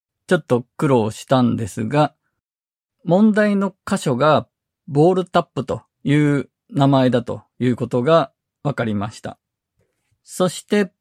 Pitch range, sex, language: 120-165 Hz, male, Japanese